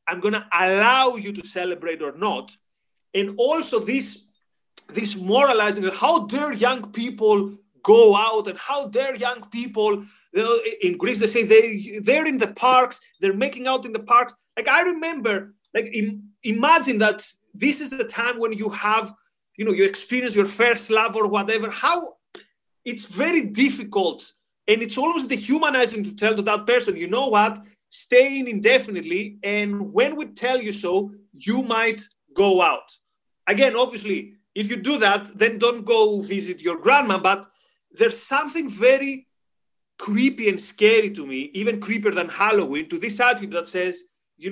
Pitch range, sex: 205-255 Hz, male